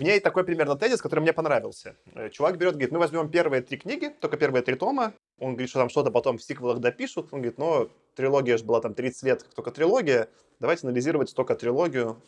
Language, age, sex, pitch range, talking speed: Russian, 20-39, male, 125-170 Hz, 220 wpm